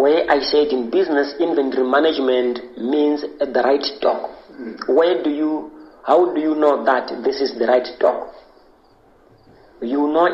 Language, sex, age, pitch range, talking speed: English, male, 40-59, 130-165 Hz, 155 wpm